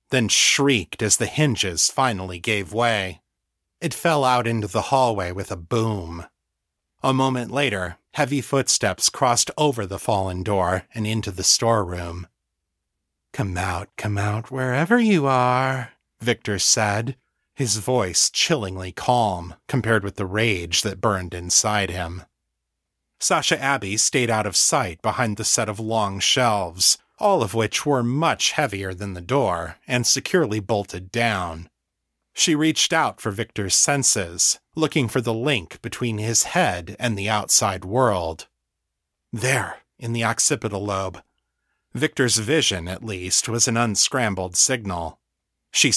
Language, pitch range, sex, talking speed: English, 95-130 Hz, male, 140 wpm